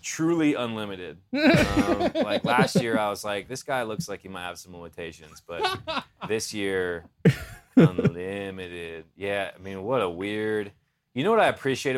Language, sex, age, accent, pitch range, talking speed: English, male, 20-39, American, 90-115 Hz, 165 wpm